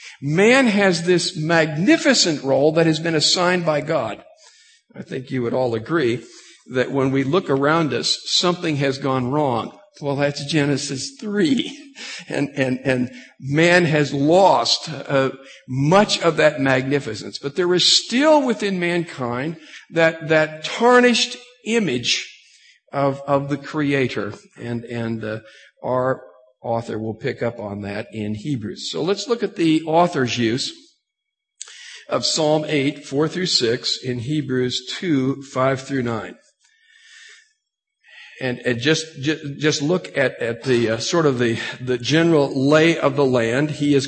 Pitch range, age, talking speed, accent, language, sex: 135-180 Hz, 50-69, 145 wpm, American, English, male